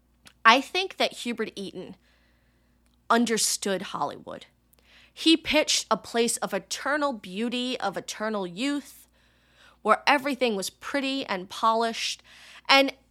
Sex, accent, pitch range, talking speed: female, American, 175-260 Hz, 110 wpm